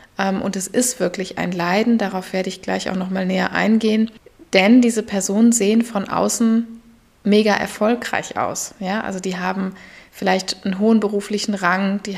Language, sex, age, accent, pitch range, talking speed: German, female, 20-39, German, 190-220 Hz, 165 wpm